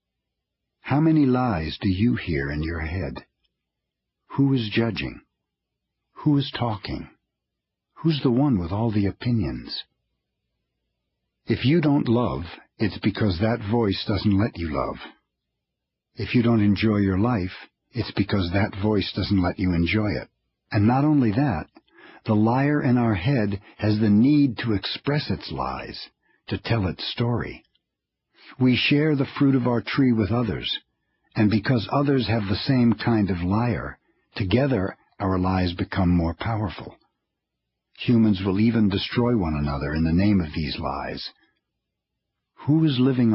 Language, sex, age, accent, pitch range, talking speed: English, male, 60-79, American, 90-120 Hz, 150 wpm